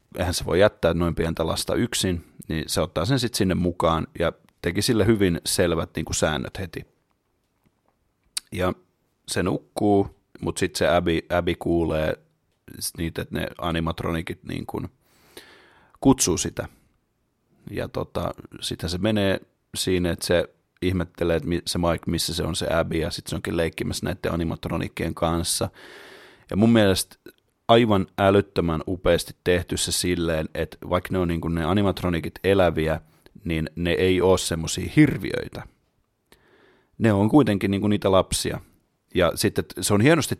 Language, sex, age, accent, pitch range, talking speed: Finnish, male, 30-49, native, 85-100 Hz, 145 wpm